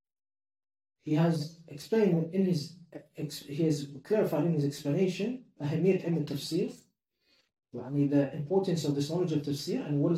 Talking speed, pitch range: 125 wpm, 145-180 Hz